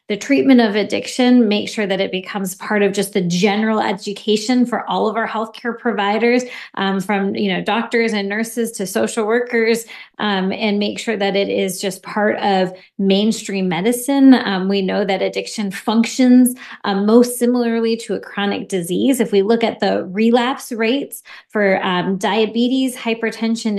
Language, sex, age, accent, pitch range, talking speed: English, female, 20-39, American, 205-255 Hz, 170 wpm